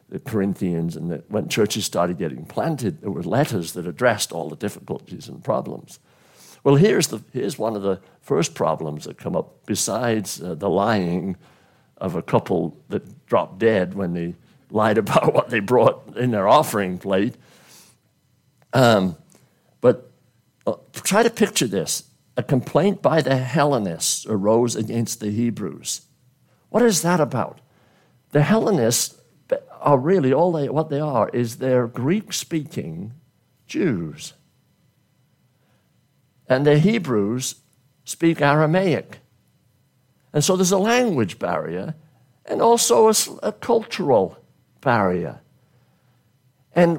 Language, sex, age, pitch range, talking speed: English, male, 60-79, 120-175 Hz, 130 wpm